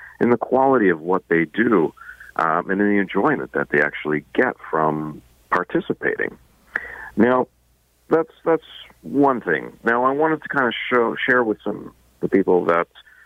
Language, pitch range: English, 90-125 Hz